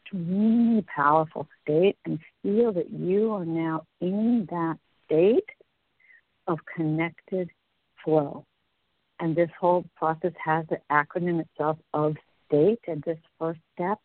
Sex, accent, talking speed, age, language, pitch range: female, American, 125 wpm, 60-79, English, 160-215 Hz